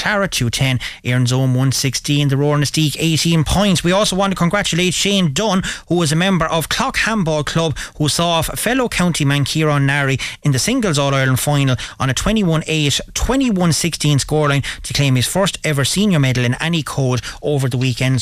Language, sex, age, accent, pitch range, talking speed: English, male, 30-49, Irish, 135-175 Hz, 200 wpm